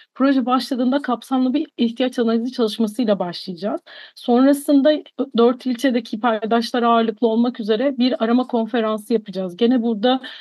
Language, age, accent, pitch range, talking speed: Turkish, 40-59, native, 220-270 Hz, 120 wpm